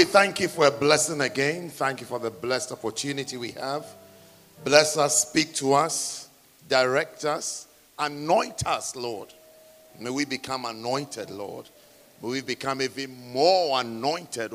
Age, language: 50-69, English